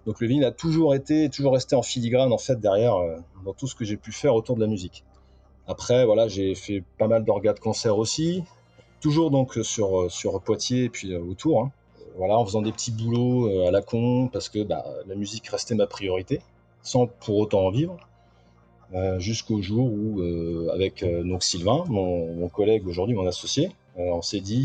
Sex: male